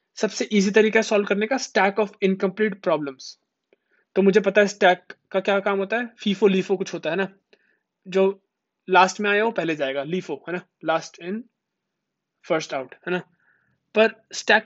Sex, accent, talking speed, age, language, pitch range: male, native, 65 wpm, 20-39, Hindi, 175-215 Hz